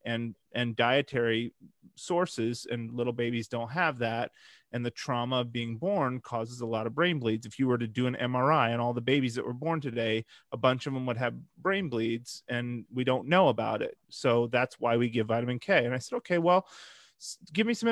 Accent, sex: American, male